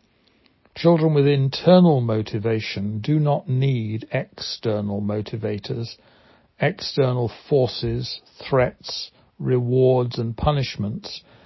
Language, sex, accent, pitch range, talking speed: English, male, British, 115-145 Hz, 80 wpm